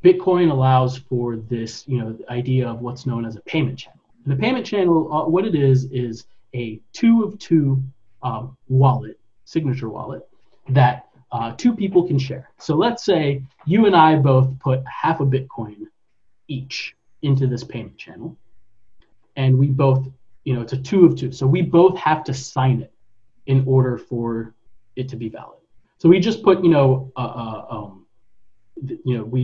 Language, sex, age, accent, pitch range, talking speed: English, male, 30-49, American, 120-165 Hz, 185 wpm